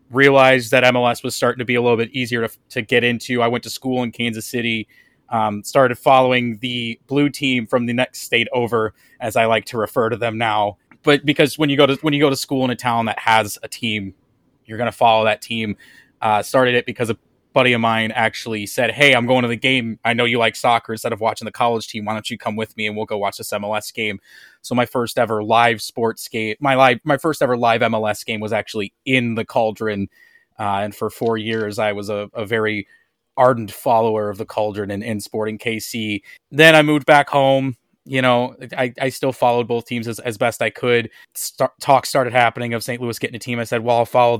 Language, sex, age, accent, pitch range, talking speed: English, male, 20-39, American, 110-125 Hz, 240 wpm